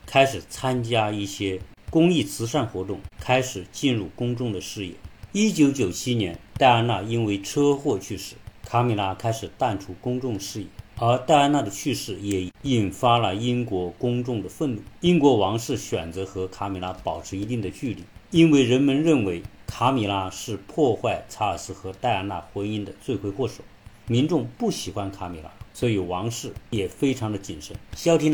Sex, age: male, 50-69